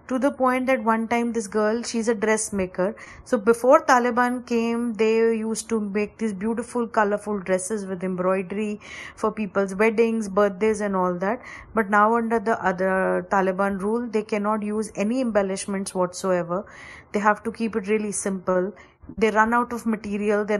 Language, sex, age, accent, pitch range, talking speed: Hindi, female, 30-49, native, 200-235 Hz, 175 wpm